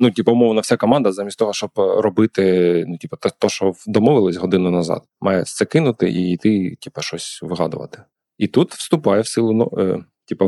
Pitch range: 90-115 Hz